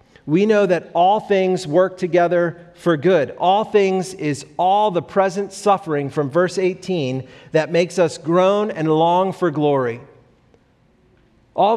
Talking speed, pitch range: 145 wpm, 165-200 Hz